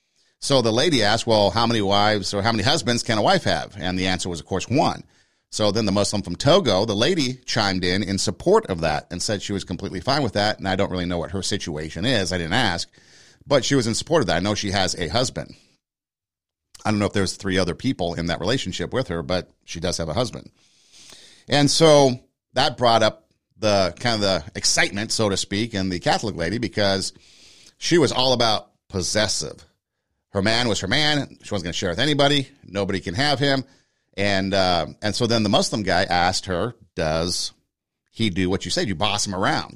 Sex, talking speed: male, 225 wpm